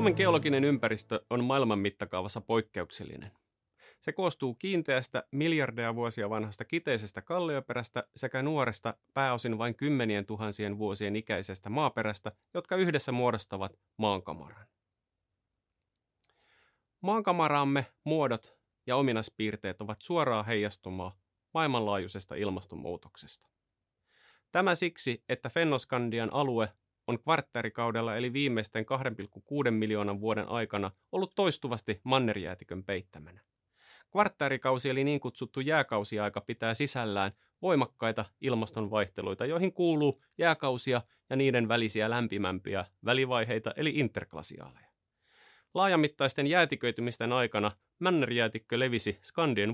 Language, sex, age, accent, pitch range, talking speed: Finnish, male, 30-49, native, 105-135 Hz, 95 wpm